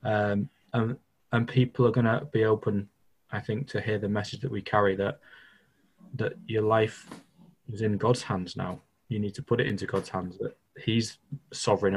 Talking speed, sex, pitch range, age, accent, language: 190 wpm, male, 100-120 Hz, 20-39, British, English